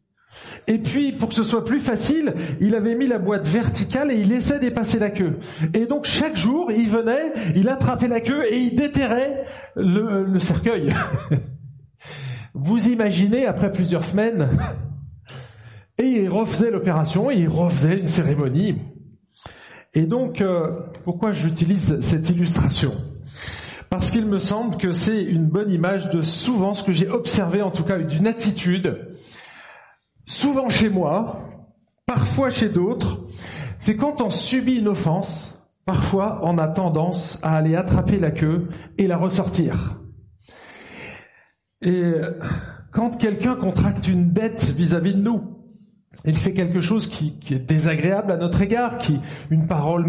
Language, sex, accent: French, male, French